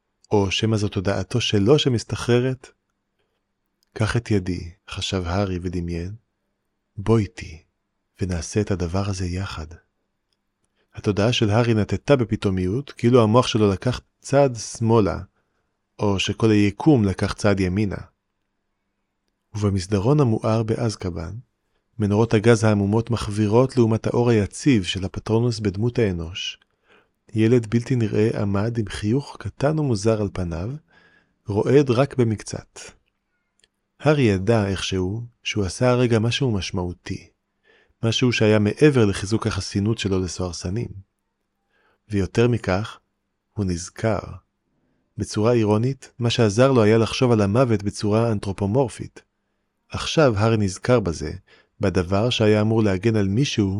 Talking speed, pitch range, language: 115 wpm, 100-115 Hz, Hebrew